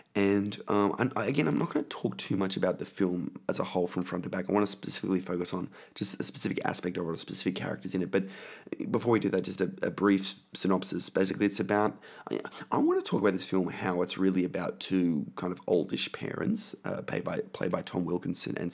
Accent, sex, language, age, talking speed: Australian, male, English, 20-39, 235 wpm